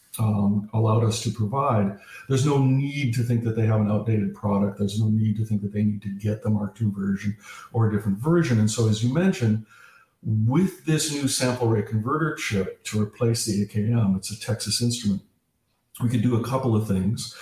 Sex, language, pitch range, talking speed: male, English, 105-120 Hz, 210 wpm